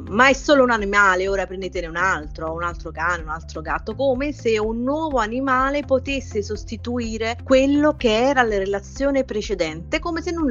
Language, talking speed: Italian, 175 wpm